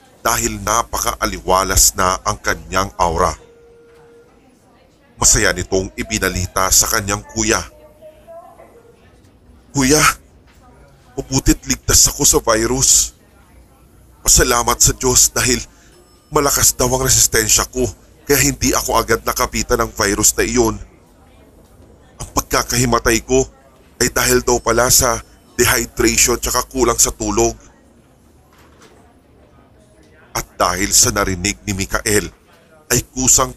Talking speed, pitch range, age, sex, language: 100 wpm, 95-125 Hz, 20-39, male, Filipino